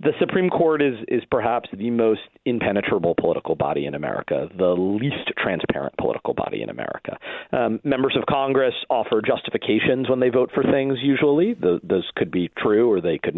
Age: 40-59